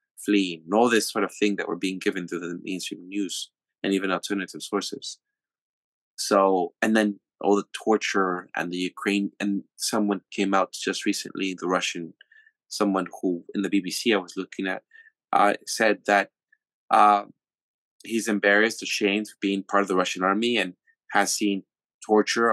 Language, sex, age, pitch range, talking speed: English, male, 20-39, 90-105 Hz, 165 wpm